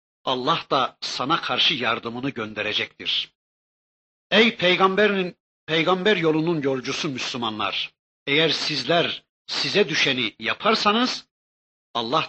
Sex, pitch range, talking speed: male, 120-165 Hz, 90 wpm